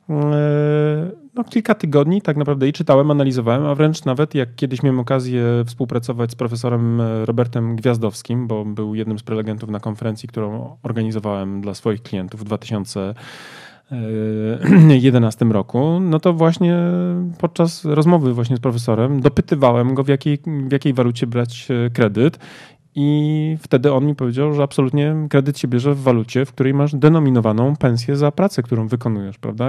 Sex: male